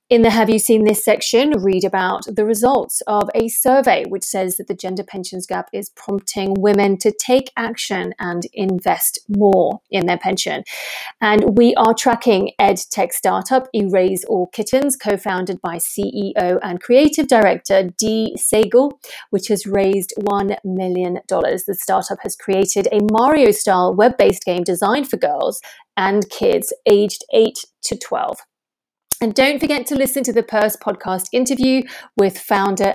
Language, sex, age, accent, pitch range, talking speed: English, female, 30-49, British, 195-235 Hz, 155 wpm